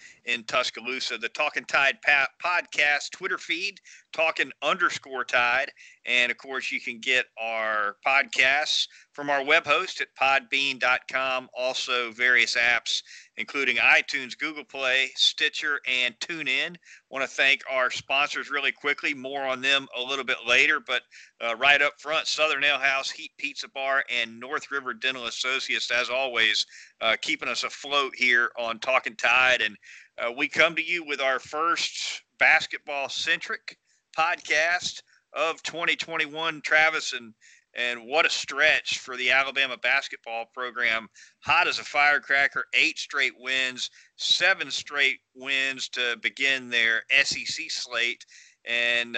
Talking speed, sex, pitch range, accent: 140 wpm, male, 120-145 Hz, American